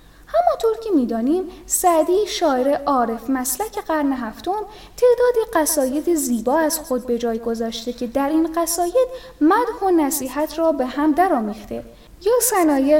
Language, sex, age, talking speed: Persian, female, 10-29, 140 wpm